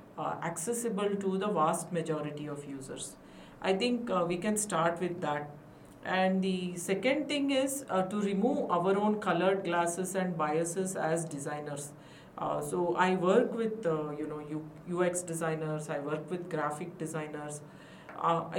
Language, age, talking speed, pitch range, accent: English, 50-69, 160 wpm, 155-195 Hz, Indian